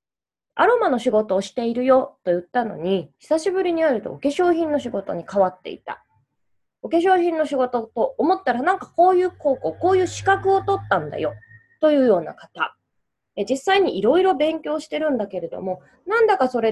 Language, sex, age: Japanese, female, 20-39